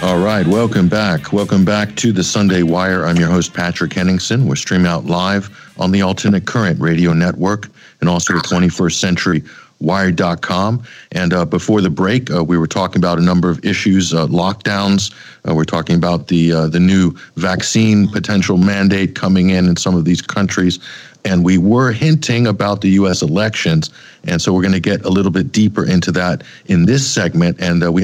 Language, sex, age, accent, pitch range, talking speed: English, male, 50-69, American, 90-105 Hz, 195 wpm